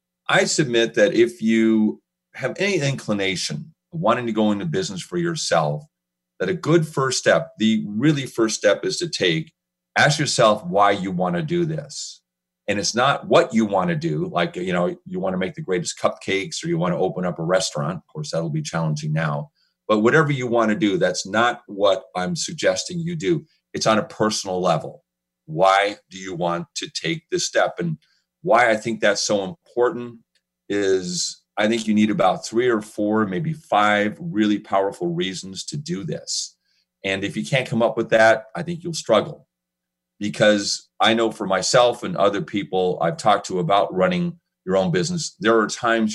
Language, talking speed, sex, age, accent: English, 195 wpm, male, 40-59, American